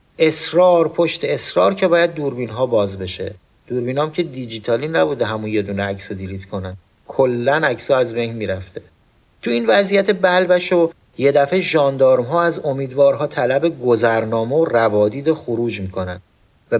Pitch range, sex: 115-165 Hz, male